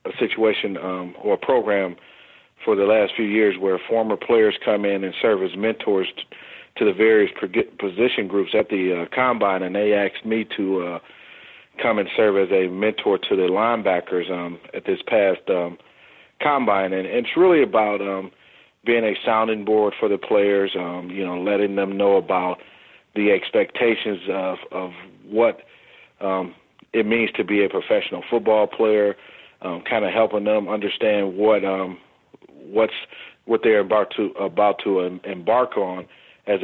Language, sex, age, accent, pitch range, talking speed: English, male, 40-59, American, 95-110 Hz, 175 wpm